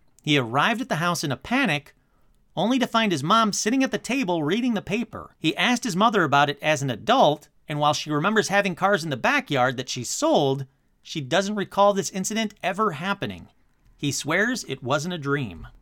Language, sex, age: English, male, 40-59